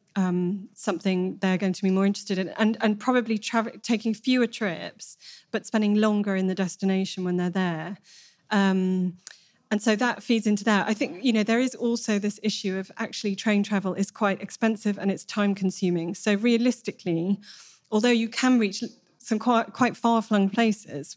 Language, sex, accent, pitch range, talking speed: English, female, British, 185-215 Hz, 180 wpm